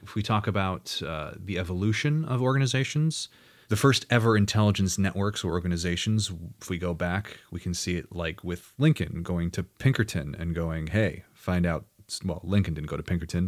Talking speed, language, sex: 185 wpm, English, male